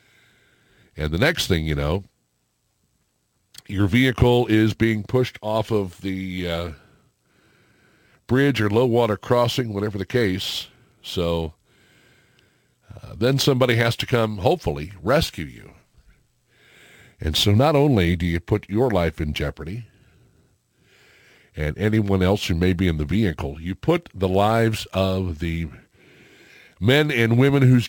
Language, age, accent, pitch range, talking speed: English, 60-79, American, 95-125 Hz, 135 wpm